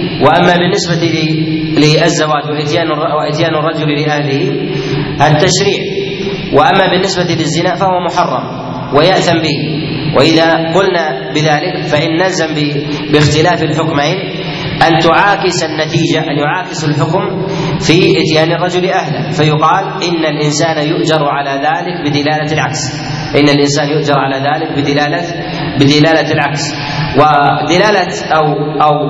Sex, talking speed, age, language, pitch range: male, 105 wpm, 30-49, Arabic, 150-175 Hz